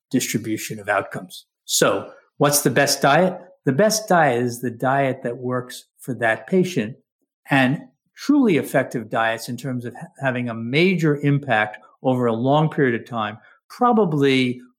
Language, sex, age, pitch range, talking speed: English, male, 50-69, 120-155 Hz, 155 wpm